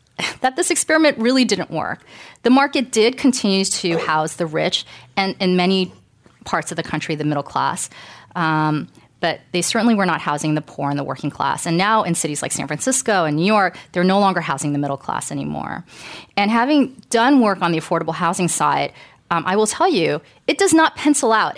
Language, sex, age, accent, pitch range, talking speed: English, female, 30-49, American, 160-220 Hz, 205 wpm